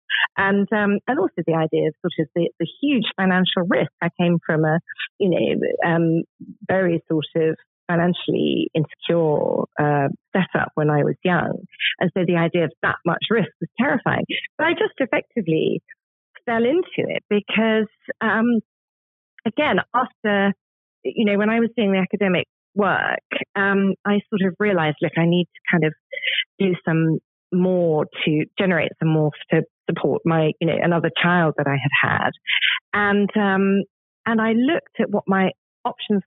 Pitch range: 170-235 Hz